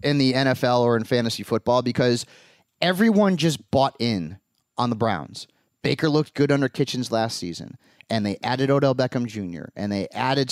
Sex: male